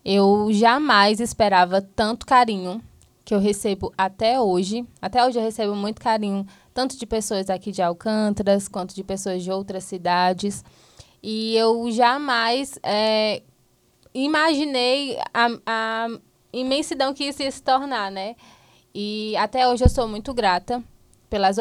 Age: 20-39